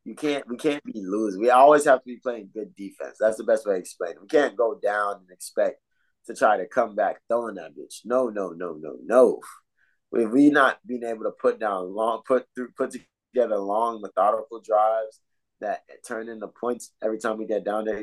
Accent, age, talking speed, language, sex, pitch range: American, 20-39, 220 wpm, English, male, 105-125 Hz